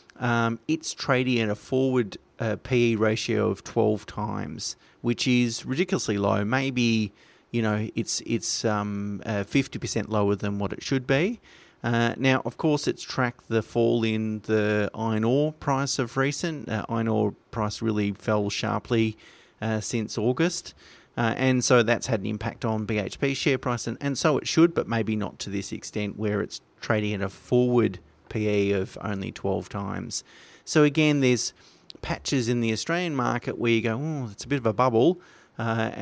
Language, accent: English, Australian